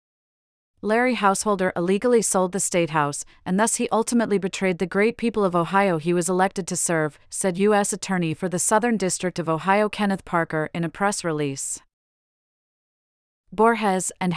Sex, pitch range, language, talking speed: female, 165-205 Hz, English, 160 wpm